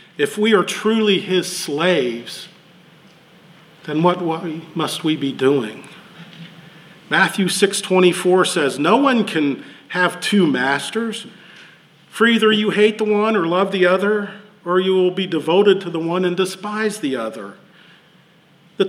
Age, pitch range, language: 50-69, 155-190 Hz, English